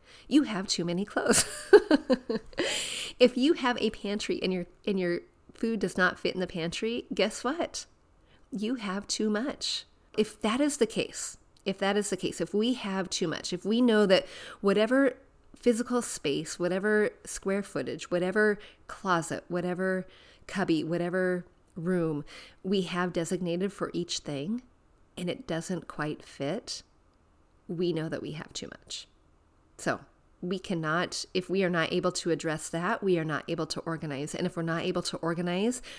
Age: 30-49